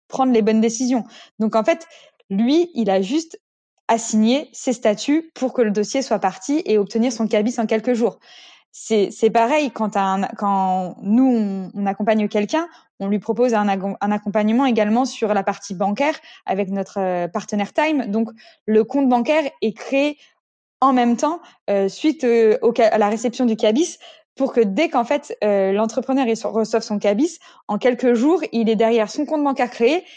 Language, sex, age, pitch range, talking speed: French, female, 20-39, 215-280 Hz, 180 wpm